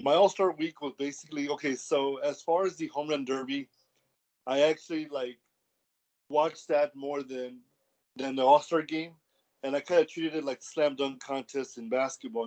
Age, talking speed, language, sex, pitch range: 20-39, 180 wpm, English, male, 130-150 Hz